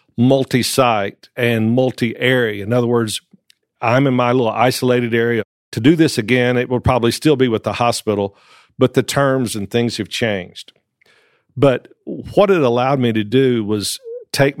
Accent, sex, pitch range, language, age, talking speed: American, male, 110-135 Hz, English, 50-69, 170 wpm